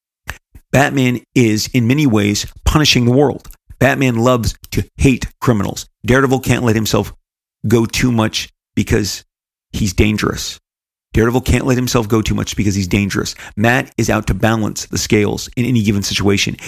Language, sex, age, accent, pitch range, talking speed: English, male, 40-59, American, 105-125 Hz, 160 wpm